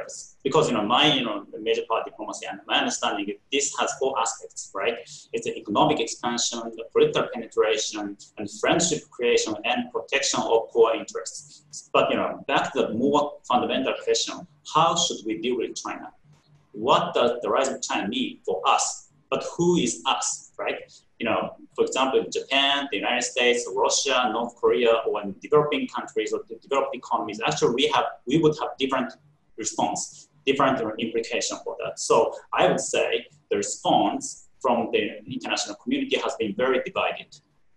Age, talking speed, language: 30-49, 170 wpm, English